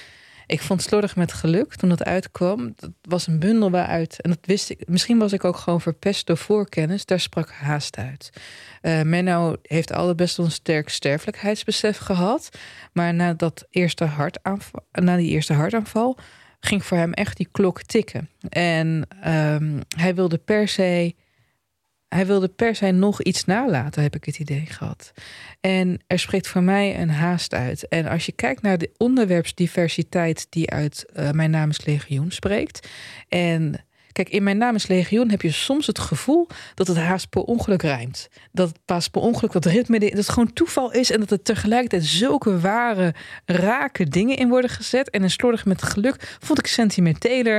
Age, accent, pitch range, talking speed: 20-39, Dutch, 165-210 Hz, 180 wpm